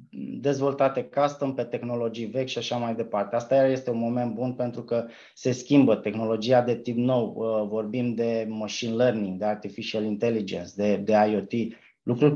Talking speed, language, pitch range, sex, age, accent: 160 wpm, Romanian, 115-135 Hz, male, 20-39, native